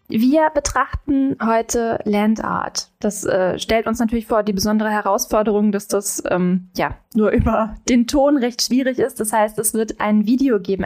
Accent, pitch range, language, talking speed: German, 195-235 Hz, German, 175 wpm